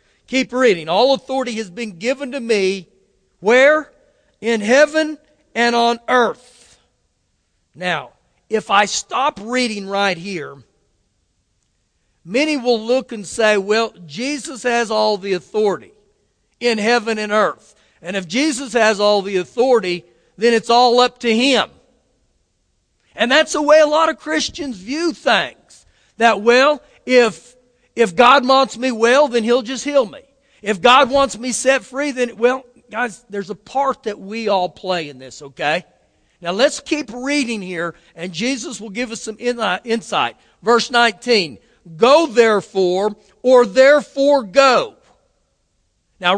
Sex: male